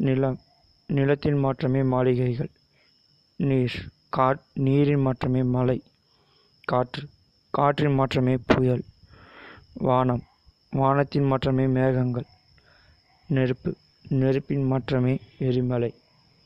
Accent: native